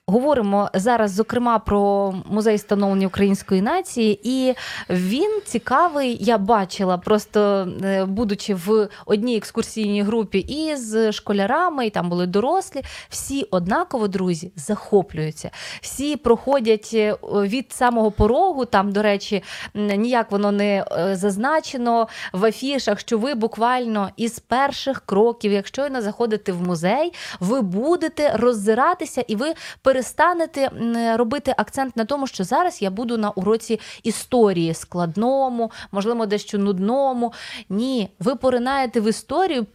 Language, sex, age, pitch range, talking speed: Ukrainian, female, 20-39, 205-255 Hz, 125 wpm